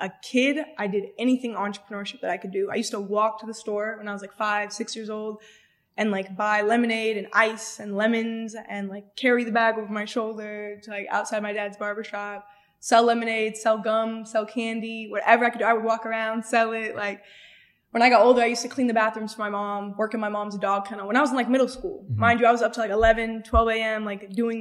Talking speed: 250 wpm